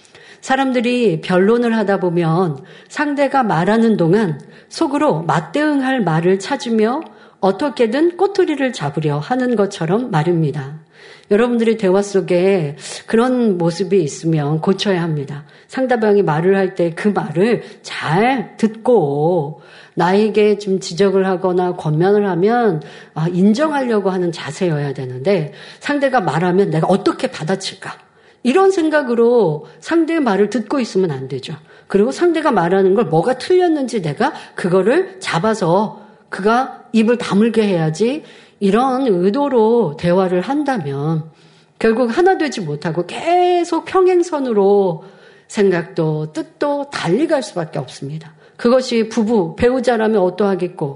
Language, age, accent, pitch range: Korean, 50-69, native, 180-250 Hz